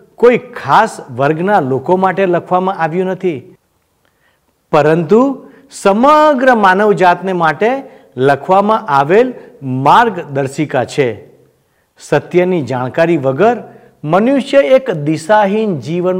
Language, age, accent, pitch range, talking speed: Gujarati, 50-69, native, 150-235 Hz, 65 wpm